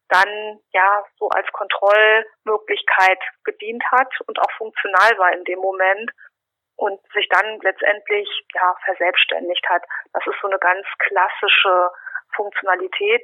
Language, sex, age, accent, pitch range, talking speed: German, female, 30-49, German, 195-220 Hz, 125 wpm